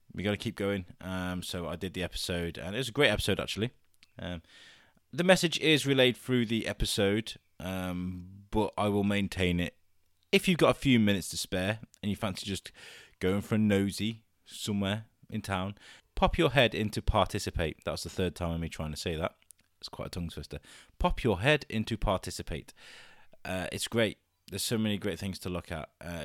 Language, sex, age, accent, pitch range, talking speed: English, male, 20-39, British, 90-110 Hz, 200 wpm